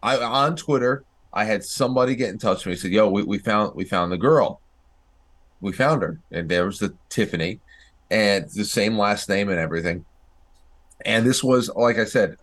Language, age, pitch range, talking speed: English, 30-49, 90-115 Hz, 205 wpm